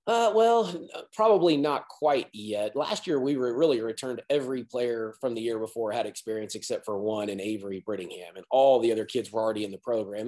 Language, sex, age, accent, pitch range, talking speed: English, male, 30-49, American, 110-130 Hz, 210 wpm